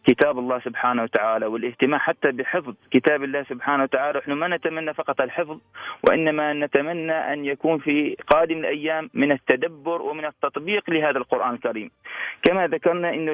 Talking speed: 150 wpm